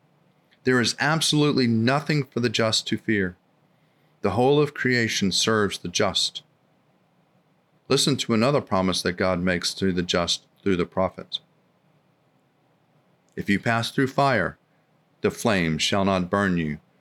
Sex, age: male, 40-59